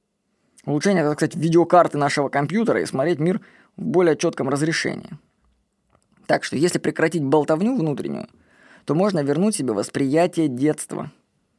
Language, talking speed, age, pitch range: Russian, 130 wpm, 20-39, 155-205 Hz